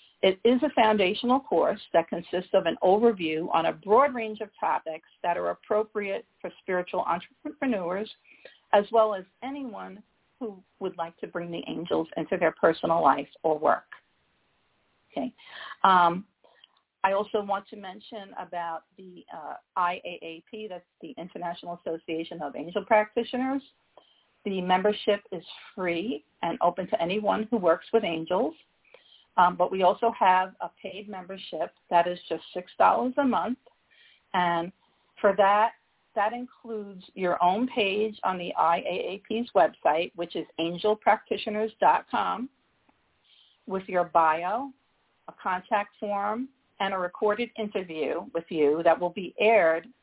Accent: American